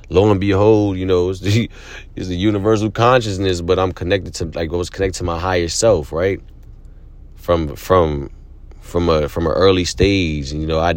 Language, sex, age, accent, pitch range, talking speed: English, male, 30-49, American, 75-100 Hz, 195 wpm